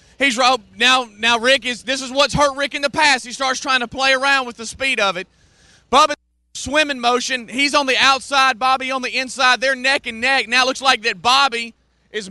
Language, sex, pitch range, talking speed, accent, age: English, male, 225-270 Hz, 230 wpm, American, 30-49